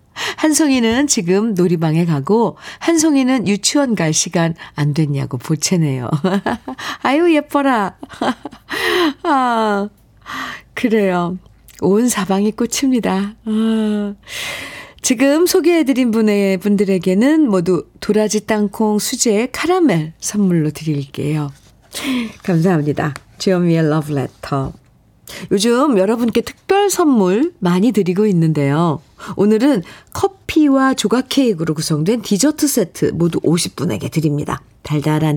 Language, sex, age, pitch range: Korean, female, 40-59, 165-245 Hz